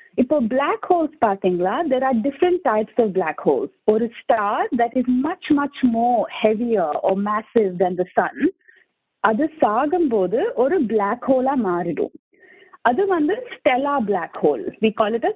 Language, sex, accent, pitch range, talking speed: Tamil, female, native, 210-300 Hz, 170 wpm